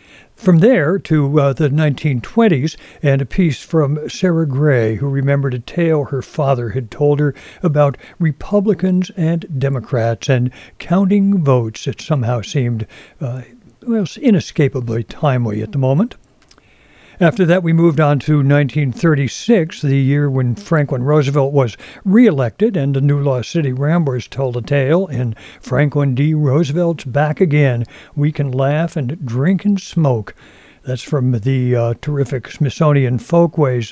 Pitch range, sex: 130-160 Hz, male